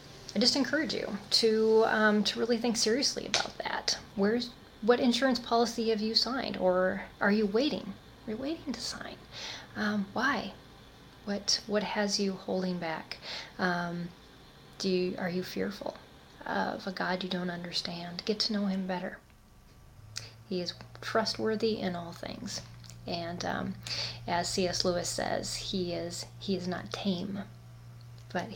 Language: English